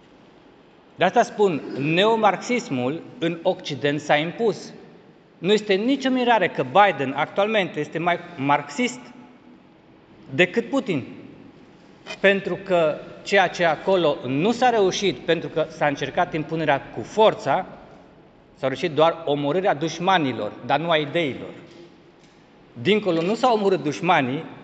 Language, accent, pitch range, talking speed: Romanian, native, 145-195 Hz, 120 wpm